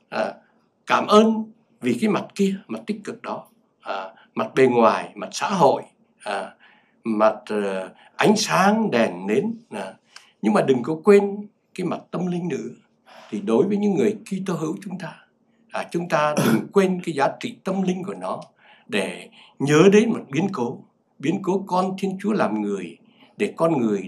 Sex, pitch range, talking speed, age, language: male, 180-215 Hz, 165 wpm, 60-79, Vietnamese